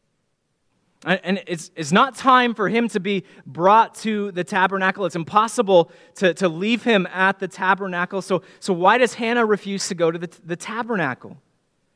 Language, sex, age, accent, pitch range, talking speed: English, male, 30-49, American, 190-255 Hz, 170 wpm